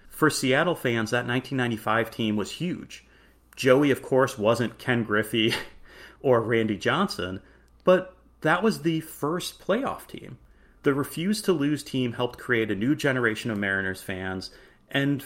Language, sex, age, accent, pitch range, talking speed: English, male, 30-49, American, 105-145 Hz, 150 wpm